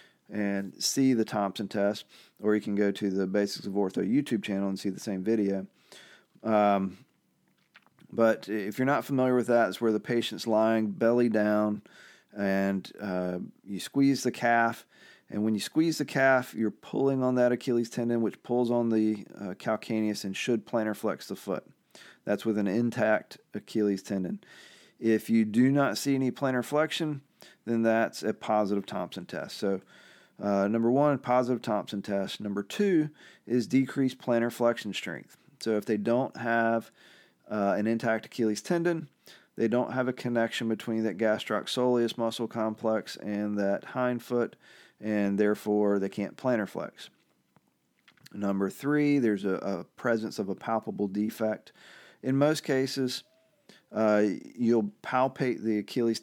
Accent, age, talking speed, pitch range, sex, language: American, 40-59, 160 wpm, 105-120 Hz, male, English